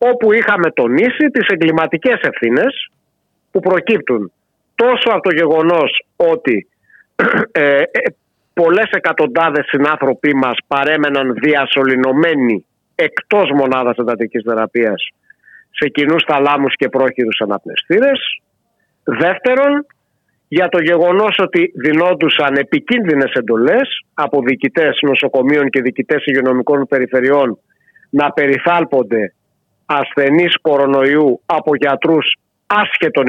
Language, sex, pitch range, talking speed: Greek, male, 135-190 Hz, 90 wpm